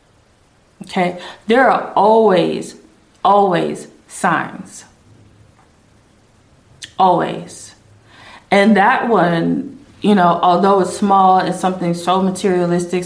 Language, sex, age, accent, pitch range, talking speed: English, female, 20-39, American, 170-220 Hz, 85 wpm